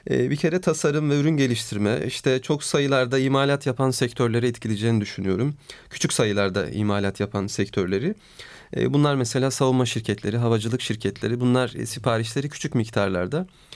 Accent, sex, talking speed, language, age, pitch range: native, male, 125 wpm, Turkish, 40-59, 110-135 Hz